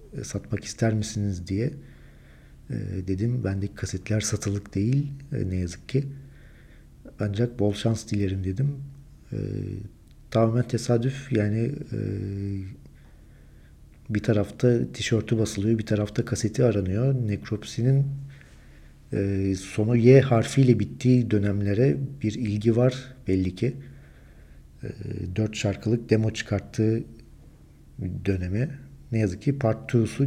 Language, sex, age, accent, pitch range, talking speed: Turkish, male, 50-69, native, 100-125 Hz, 110 wpm